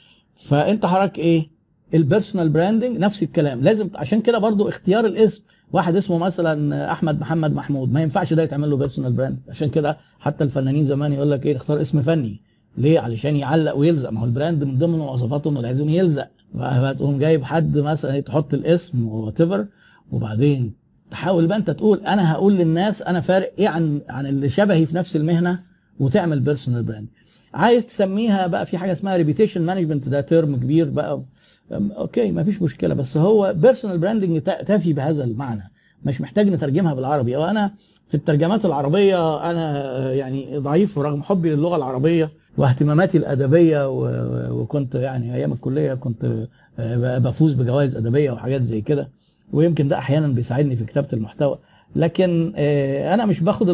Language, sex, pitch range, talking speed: Arabic, male, 140-180 Hz, 155 wpm